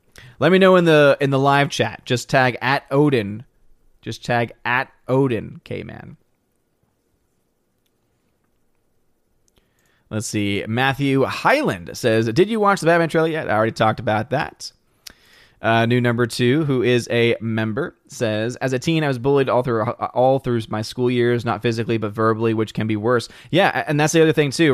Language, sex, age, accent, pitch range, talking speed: English, male, 20-39, American, 115-135 Hz, 175 wpm